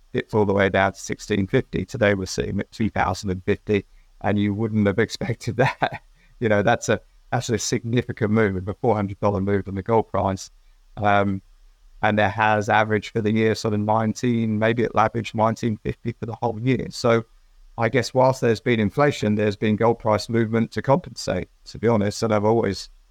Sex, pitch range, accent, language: male, 100-115 Hz, British, English